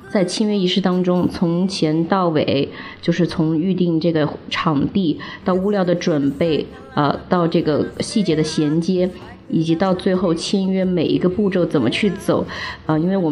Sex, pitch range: female, 160-185 Hz